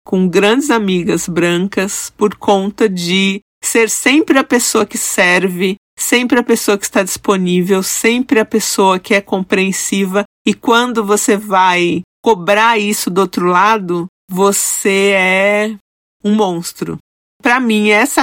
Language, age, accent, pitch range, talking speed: Portuguese, 40-59, Brazilian, 175-235 Hz, 135 wpm